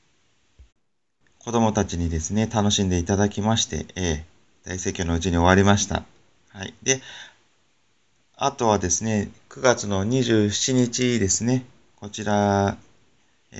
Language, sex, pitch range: Japanese, male, 95-125 Hz